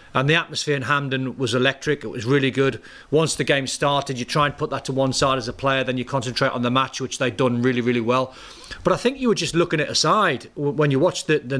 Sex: male